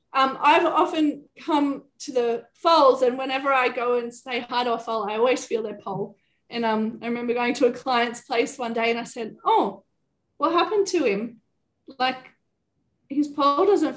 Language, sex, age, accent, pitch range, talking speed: English, female, 20-39, Australian, 225-275 Hz, 195 wpm